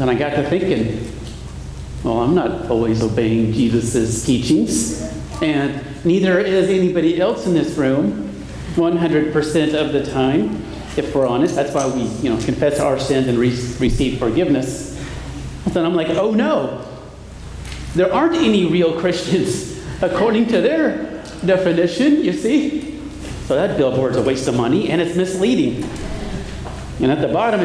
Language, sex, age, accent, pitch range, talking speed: English, male, 40-59, American, 125-180 Hz, 150 wpm